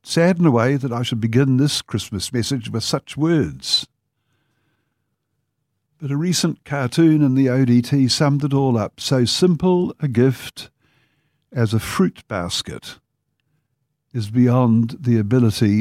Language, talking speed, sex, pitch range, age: English, 140 wpm, male, 115-140 Hz, 60-79